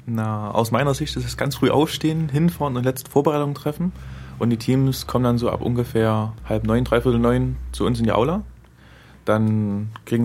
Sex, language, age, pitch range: male, German, 20-39, 110-125 Hz